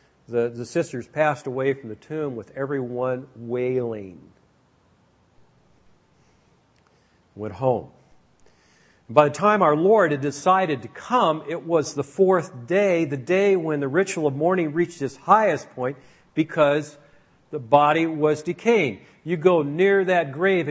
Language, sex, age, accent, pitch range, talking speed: English, male, 50-69, American, 125-165 Hz, 140 wpm